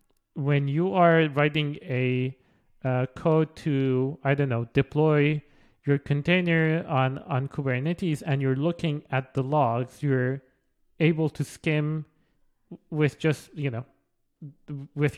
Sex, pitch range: male, 130-150 Hz